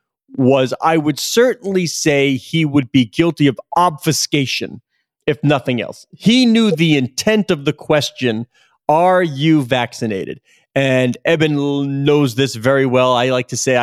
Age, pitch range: 40-59, 130-165 Hz